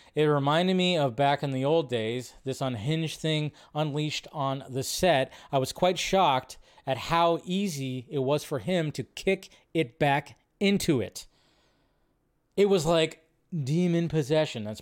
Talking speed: 160 wpm